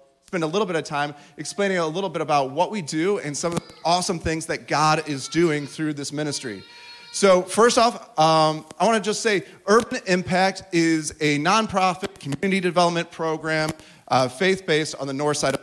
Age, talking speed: 30-49, 195 wpm